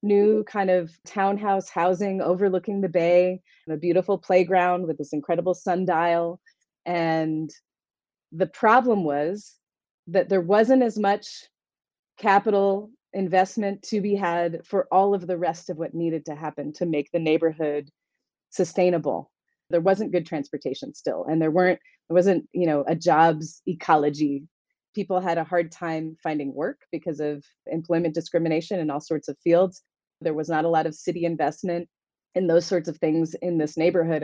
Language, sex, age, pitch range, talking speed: English, female, 30-49, 165-200 Hz, 160 wpm